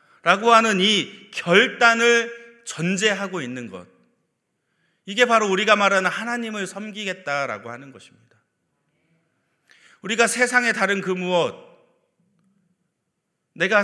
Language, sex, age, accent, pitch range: Korean, male, 30-49, native, 165-215 Hz